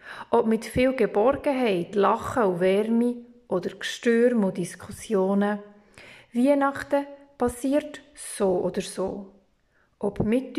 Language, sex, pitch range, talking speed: German, female, 195-250 Hz, 100 wpm